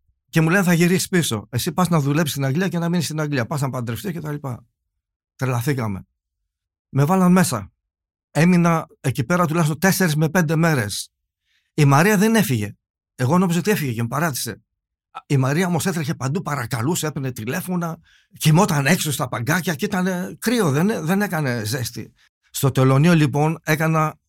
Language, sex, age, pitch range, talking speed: Greek, male, 50-69, 130-175 Hz, 170 wpm